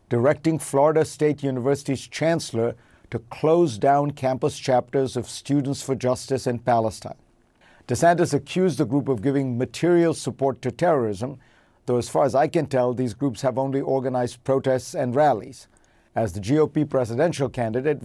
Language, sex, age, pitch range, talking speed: English, male, 50-69, 125-150 Hz, 155 wpm